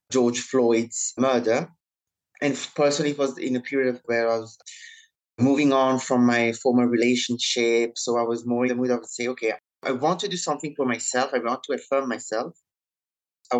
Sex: male